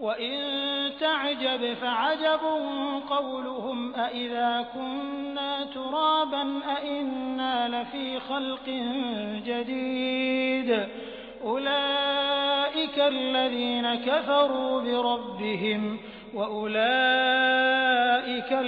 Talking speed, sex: 50 wpm, male